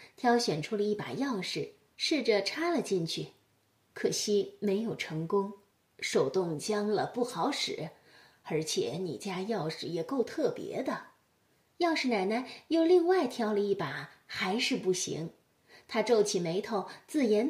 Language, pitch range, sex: Chinese, 200-330 Hz, female